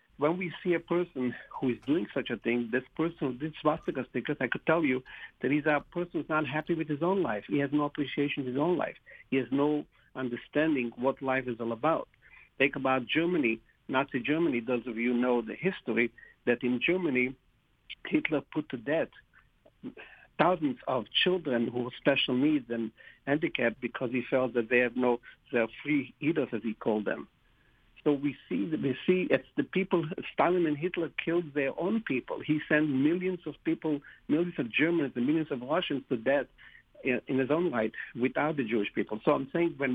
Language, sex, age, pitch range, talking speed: English, male, 50-69, 125-165 Hz, 195 wpm